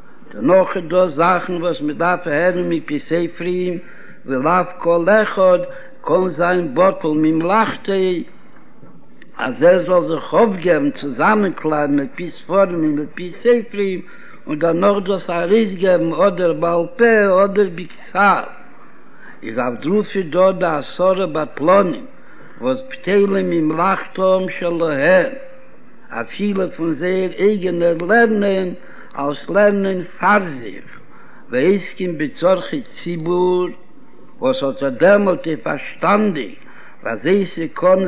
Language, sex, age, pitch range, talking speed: Hebrew, male, 60-79, 165-200 Hz, 90 wpm